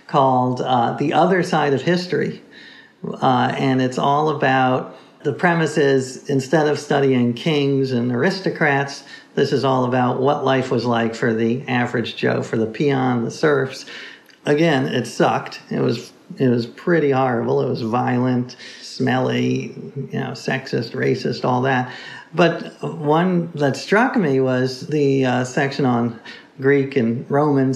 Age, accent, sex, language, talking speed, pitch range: 50-69, American, male, English, 150 wpm, 130-170 Hz